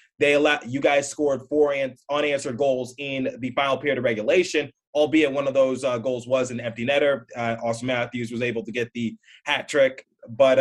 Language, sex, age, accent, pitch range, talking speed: English, male, 20-39, American, 120-145 Hz, 200 wpm